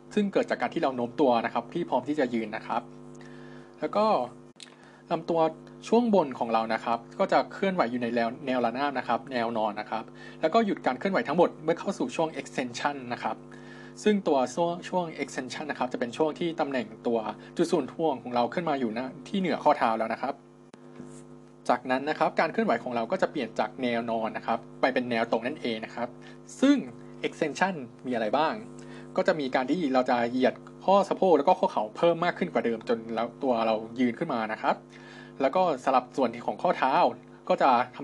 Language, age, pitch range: Thai, 20-39, 115-160 Hz